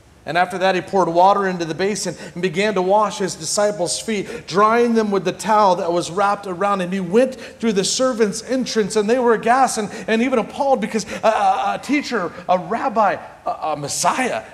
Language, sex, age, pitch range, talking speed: English, male, 40-59, 160-220 Hz, 205 wpm